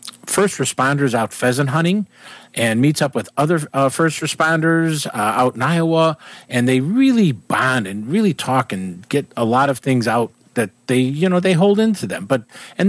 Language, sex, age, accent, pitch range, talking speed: English, male, 50-69, American, 130-180 Hz, 190 wpm